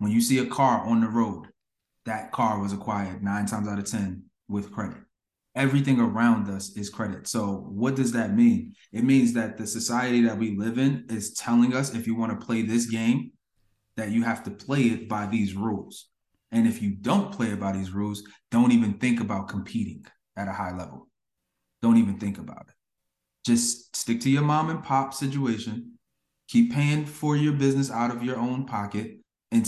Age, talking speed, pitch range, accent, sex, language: 20-39, 200 wpm, 110-140 Hz, American, male, English